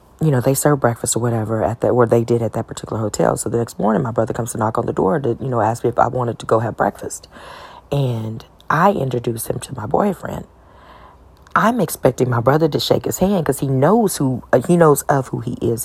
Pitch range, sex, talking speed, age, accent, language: 120-195 Hz, female, 250 wpm, 40-59, American, English